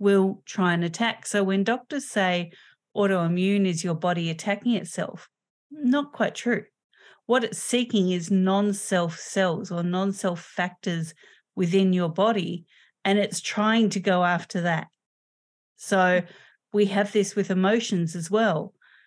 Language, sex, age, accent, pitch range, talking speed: English, female, 40-59, Australian, 175-210 Hz, 140 wpm